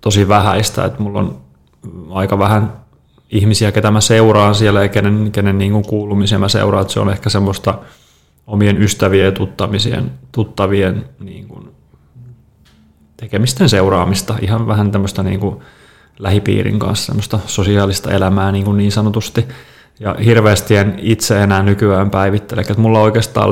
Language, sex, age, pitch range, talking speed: Finnish, male, 30-49, 95-110 Hz, 135 wpm